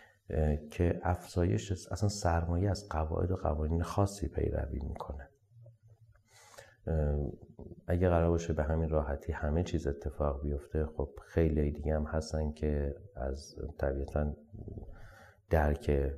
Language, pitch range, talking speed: Persian, 80-105 Hz, 110 wpm